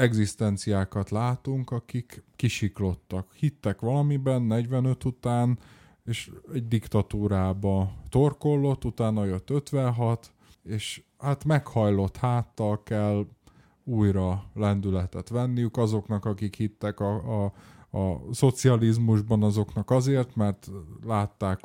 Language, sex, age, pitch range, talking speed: Hungarian, male, 20-39, 100-120 Hz, 95 wpm